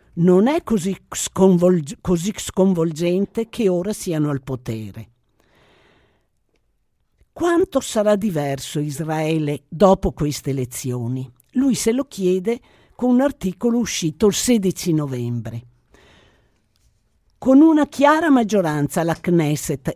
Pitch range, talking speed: 150-220 Hz, 100 wpm